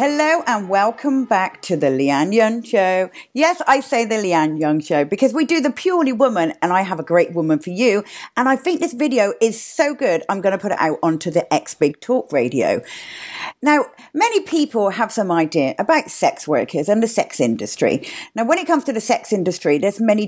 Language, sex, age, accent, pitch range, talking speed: English, female, 50-69, British, 190-295 Hz, 215 wpm